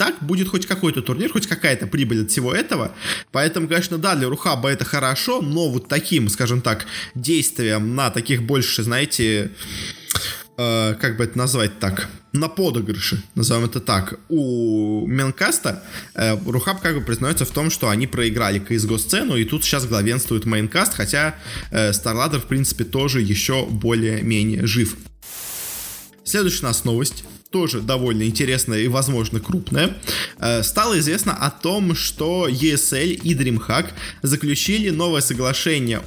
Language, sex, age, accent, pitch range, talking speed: Russian, male, 20-39, native, 115-150 Hz, 145 wpm